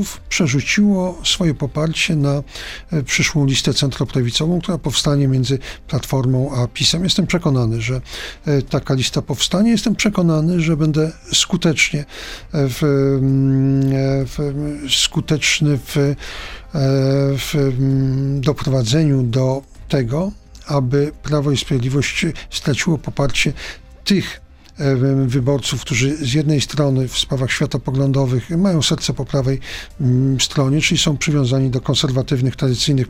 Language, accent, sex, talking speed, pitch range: Polish, native, male, 105 wpm, 135-155 Hz